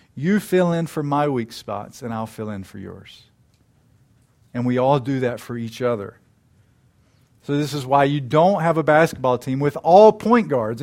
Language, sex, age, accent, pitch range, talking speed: English, male, 50-69, American, 125-180 Hz, 195 wpm